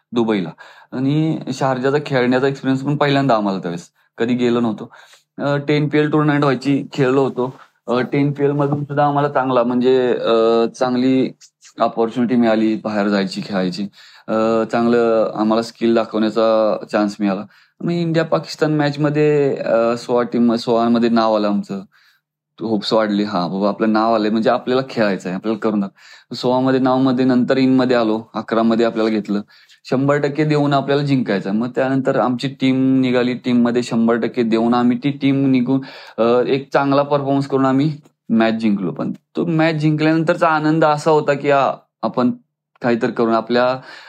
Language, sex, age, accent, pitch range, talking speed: Marathi, male, 30-49, native, 110-140 Hz, 155 wpm